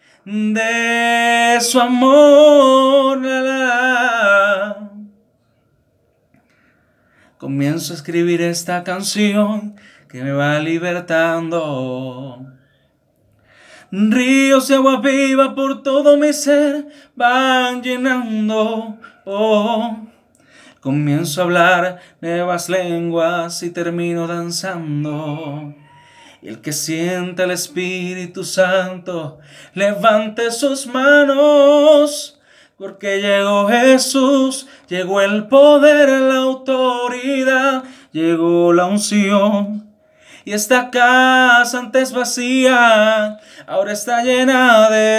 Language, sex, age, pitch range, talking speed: English, male, 30-49, 175-265 Hz, 85 wpm